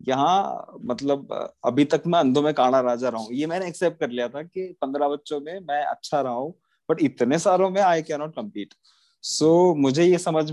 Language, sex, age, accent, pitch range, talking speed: Hindi, male, 20-39, native, 120-170 Hz, 200 wpm